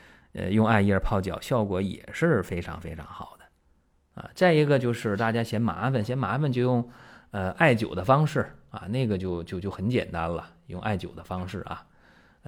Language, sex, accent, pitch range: Chinese, male, native, 95-130 Hz